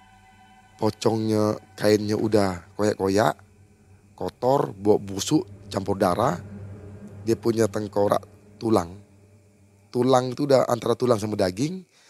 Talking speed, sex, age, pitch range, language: 100 wpm, male, 30-49, 100-140 Hz, Indonesian